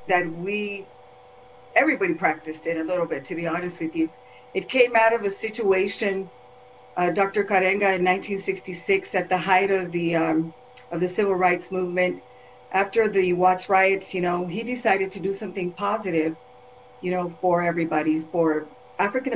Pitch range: 180-210 Hz